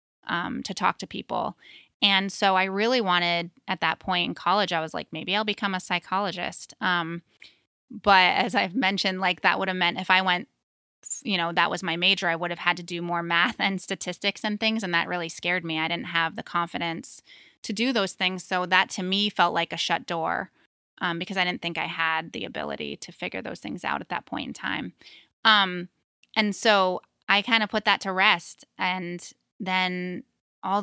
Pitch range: 175-205 Hz